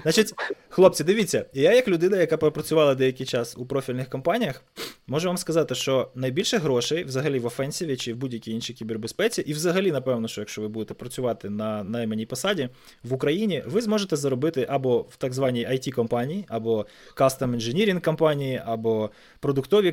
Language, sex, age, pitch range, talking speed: Ukrainian, male, 20-39, 120-165 Hz, 160 wpm